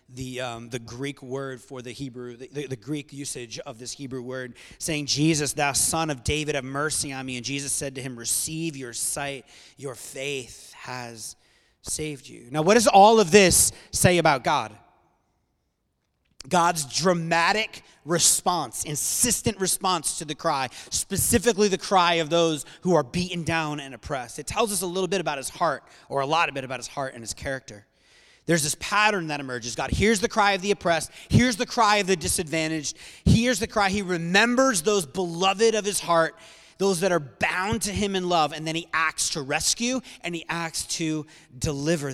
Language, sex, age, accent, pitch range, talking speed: English, male, 30-49, American, 130-180 Hz, 190 wpm